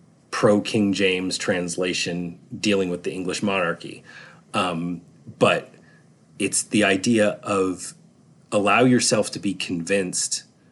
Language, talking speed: English, 105 wpm